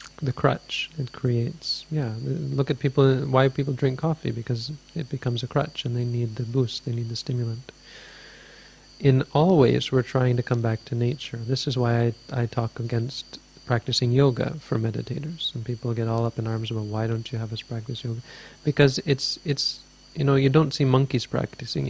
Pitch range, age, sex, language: 120-145 Hz, 40-59, male, English